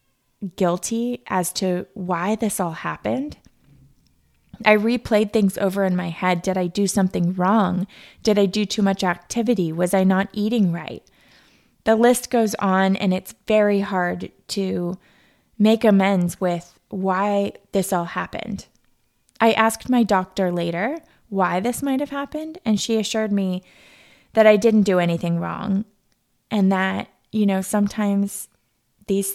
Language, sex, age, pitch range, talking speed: English, female, 20-39, 180-215 Hz, 145 wpm